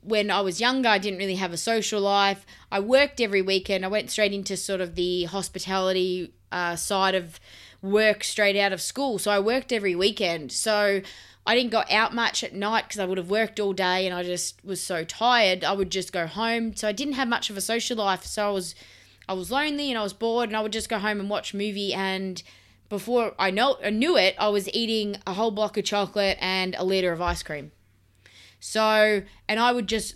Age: 20-39